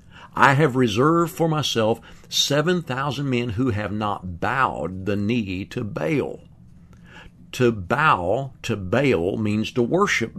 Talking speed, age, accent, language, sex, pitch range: 125 wpm, 50-69, American, English, male, 100-135 Hz